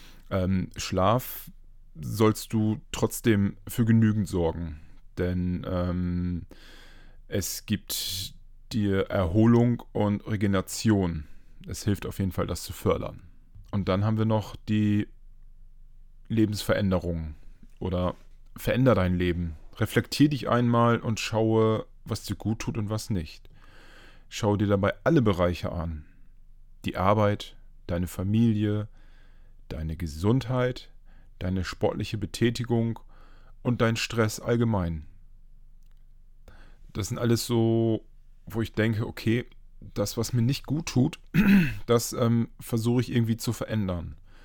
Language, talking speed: German, 115 wpm